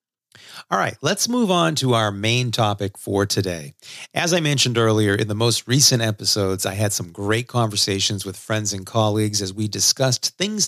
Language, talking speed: English, 185 wpm